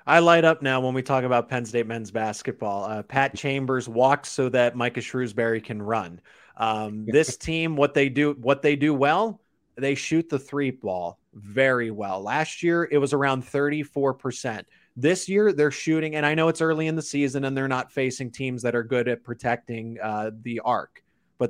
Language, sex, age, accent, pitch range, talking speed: English, male, 20-39, American, 120-145 Hz, 200 wpm